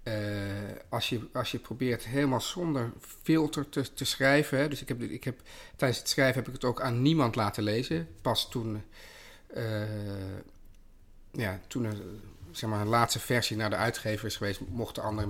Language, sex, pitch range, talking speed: Dutch, male, 110-145 Hz, 185 wpm